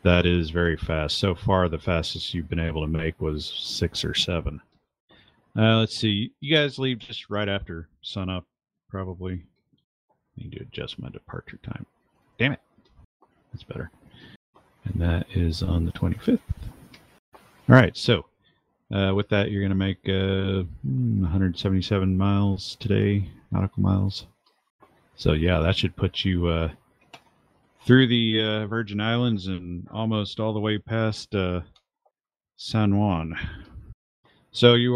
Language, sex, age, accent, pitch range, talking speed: English, male, 40-59, American, 90-105 Hz, 140 wpm